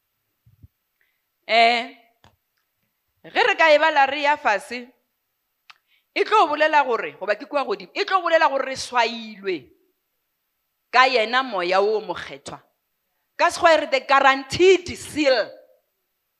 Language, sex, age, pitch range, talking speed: English, female, 50-69, 205-305 Hz, 90 wpm